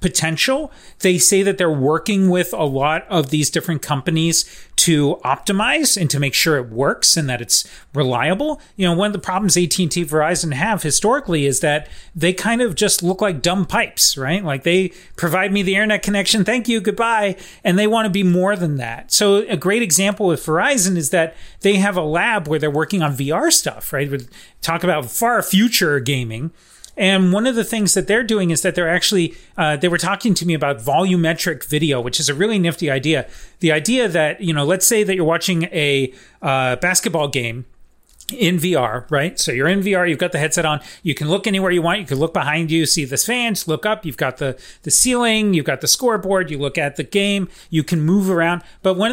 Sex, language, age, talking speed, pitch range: male, English, 30-49, 215 wpm, 155-200 Hz